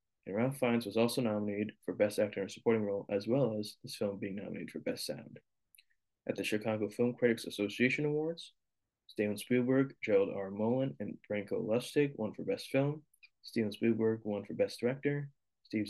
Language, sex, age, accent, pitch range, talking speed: English, male, 20-39, American, 105-125 Hz, 185 wpm